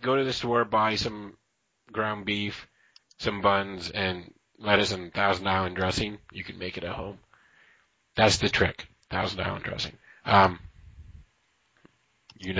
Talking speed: 145 wpm